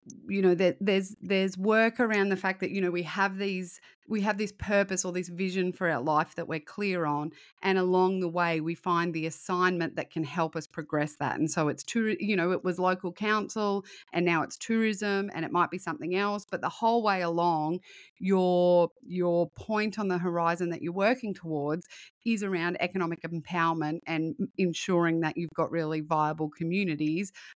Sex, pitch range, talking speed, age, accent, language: female, 165-190 Hz, 195 wpm, 30-49, Australian, English